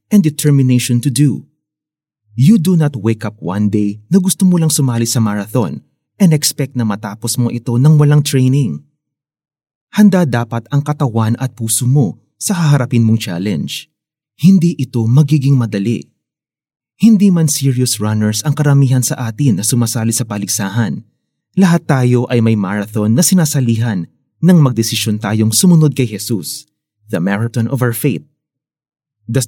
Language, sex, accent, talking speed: Filipino, male, native, 150 wpm